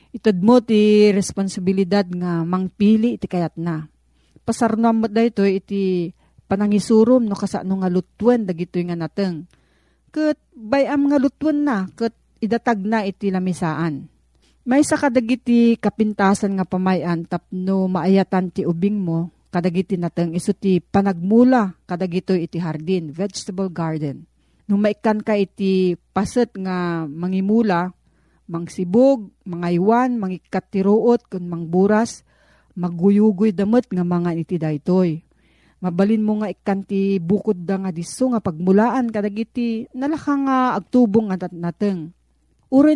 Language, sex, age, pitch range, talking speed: Filipino, female, 40-59, 180-230 Hz, 125 wpm